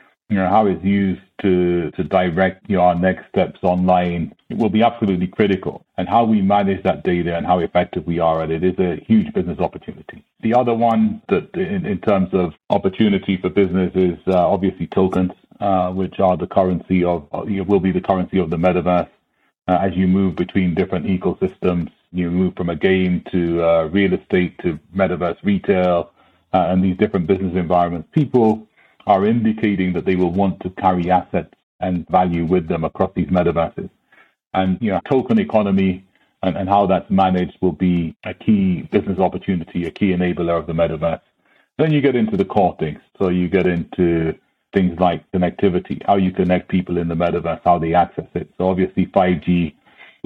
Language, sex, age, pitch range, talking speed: English, male, 40-59, 90-100 Hz, 190 wpm